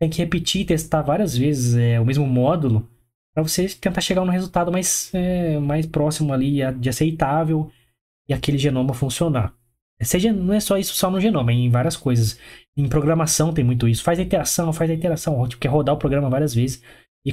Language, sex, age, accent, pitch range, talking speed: Portuguese, male, 20-39, Brazilian, 125-170 Hz, 210 wpm